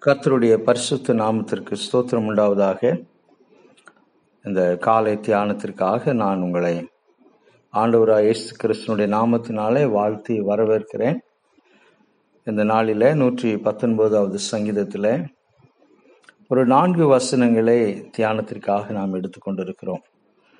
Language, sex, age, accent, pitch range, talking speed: Tamil, male, 50-69, native, 105-125 Hz, 80 wpm